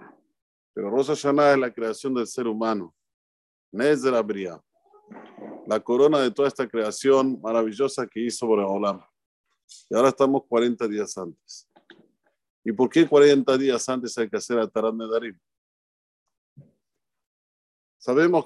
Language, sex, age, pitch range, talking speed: Spanish, male, 50-69, 115-155 Hz, 140 wpm